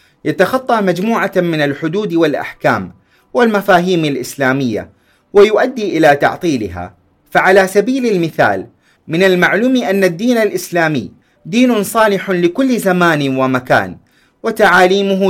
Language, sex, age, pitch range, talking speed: Arabic, male, 30-49, 145-215 Hz, 95 wpm